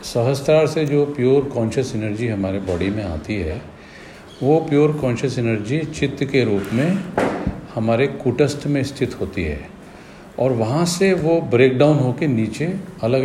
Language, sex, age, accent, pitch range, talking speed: Hindi, male, 50-69, native, 115-155 Hz, 155 wpm